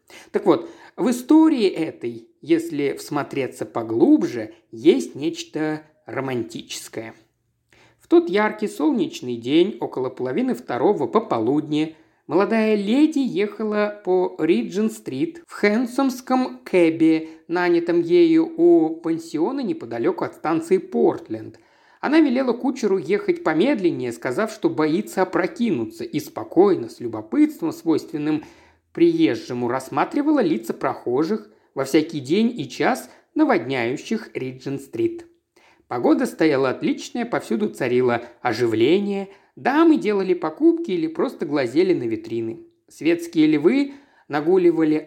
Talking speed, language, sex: 105 wpm, Russian, male